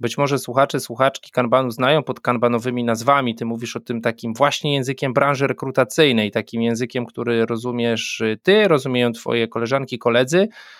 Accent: native